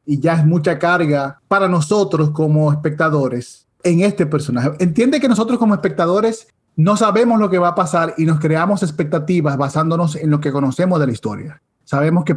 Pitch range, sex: 150-185 Hz, male